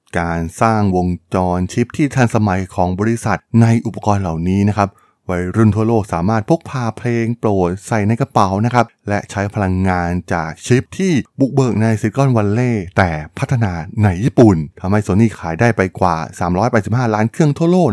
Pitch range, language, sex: 90-120 Hz, Thai, male